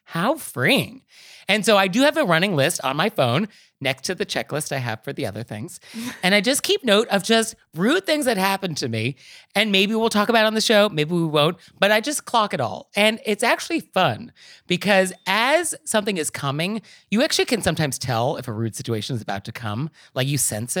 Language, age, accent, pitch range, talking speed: English, 30-49, American, 140-215 Hz, 230 wpm